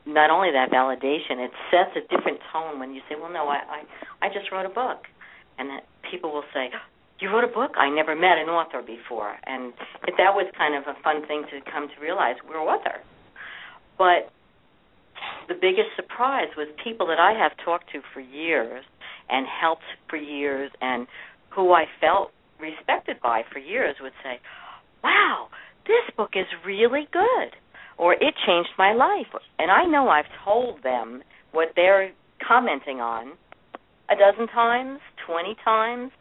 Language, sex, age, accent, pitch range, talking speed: English, female, 60-79, American, 150-195 Hz, 170 wpm